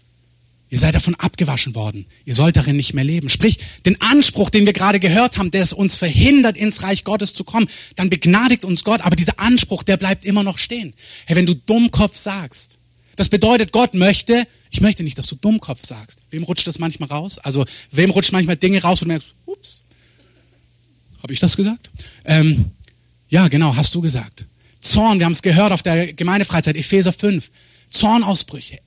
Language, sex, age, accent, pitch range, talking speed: German, male, 30-49, German, 145-215 Hz, 190 wpm